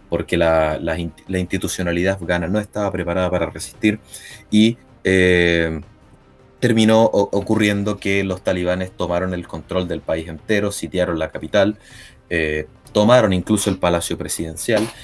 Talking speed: 130 wpm